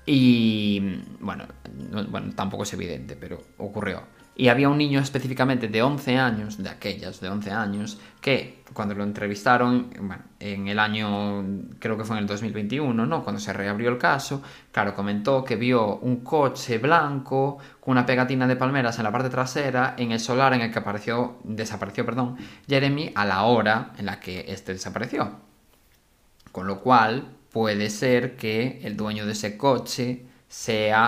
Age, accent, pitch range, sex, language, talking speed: 20-39, Spanish, 105-135 Hz, male, Spanish, 170 wpm